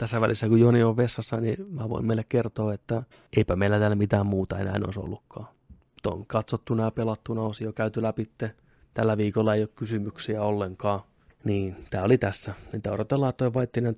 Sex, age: male, 20-39